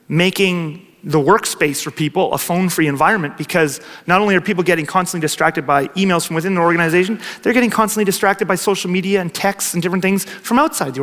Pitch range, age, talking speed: 200-275 Hz, 30-49, 200 wpm